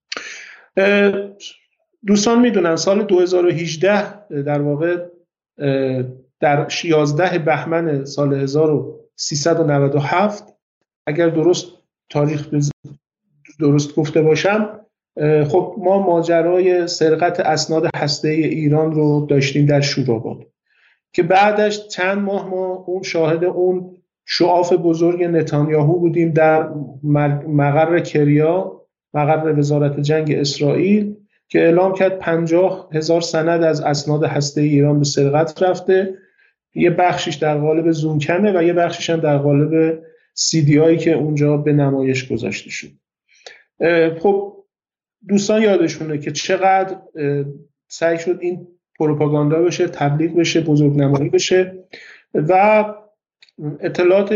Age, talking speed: 50-69, 105 wpm